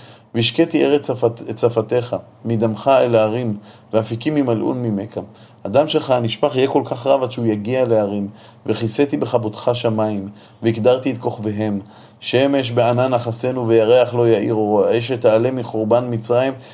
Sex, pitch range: male, 110-130 Hz